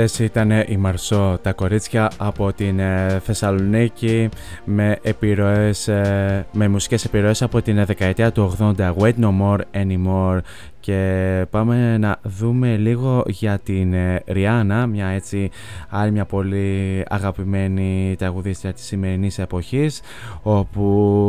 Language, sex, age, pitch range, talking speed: Greek, male, 20-39, 100-115 Hz, 125 wpm